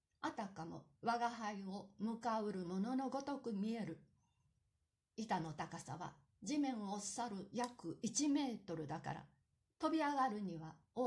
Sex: female